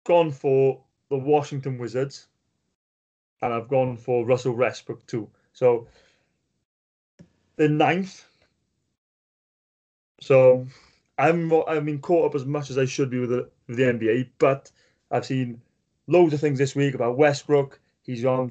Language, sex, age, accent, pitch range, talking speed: English, male, 30-49, British, 125-145 Hz, 145 wpm